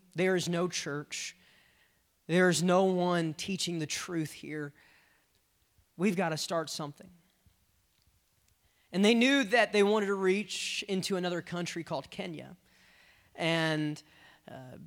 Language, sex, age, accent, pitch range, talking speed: English, male, 30-49, American, 145-185 Hz, 130 wpm